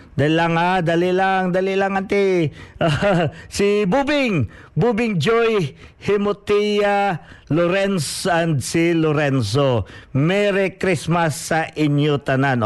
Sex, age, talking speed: male, 50-69, 110 wpm